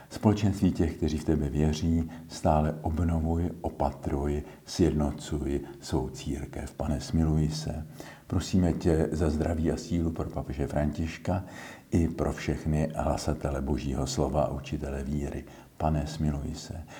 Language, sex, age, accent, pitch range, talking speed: Czech, male, 50-69, native, 75-85 Hz, 125 wpm